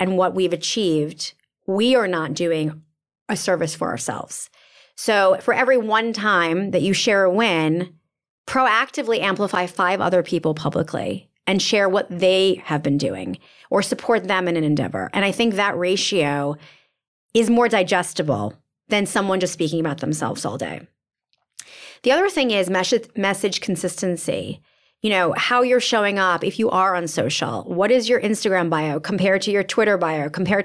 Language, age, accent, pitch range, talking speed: English, 30-49, American, 170-225 Hz, 165 wpm